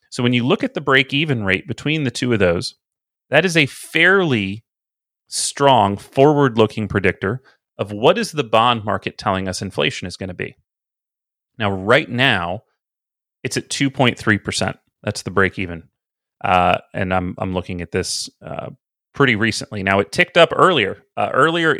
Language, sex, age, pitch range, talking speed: English, male, 30-49, 100-130 Hz, 160 wpm